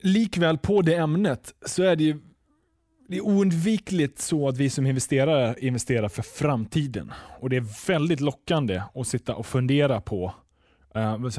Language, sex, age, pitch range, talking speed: Swedish, male, 20-39, 115-160 Hz, 160 wpm